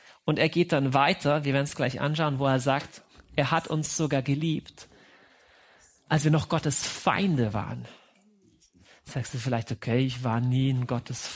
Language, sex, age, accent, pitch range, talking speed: German, male, 40-59, German, 155-235 Hz, 175 wpm